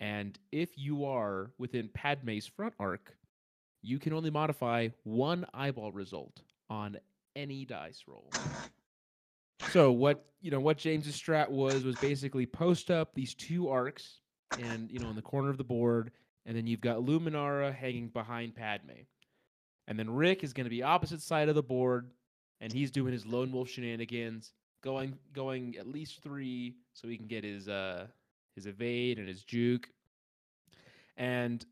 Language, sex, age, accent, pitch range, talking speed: English, male, 20-39, American, 110-135 Hz, 165 wpm